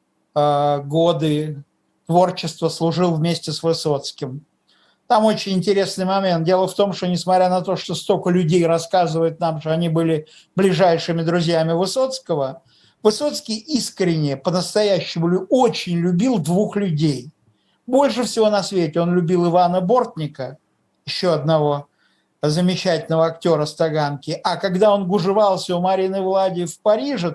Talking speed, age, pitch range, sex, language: 125 wpm, 50-69, 160-200 Hz, male, Russian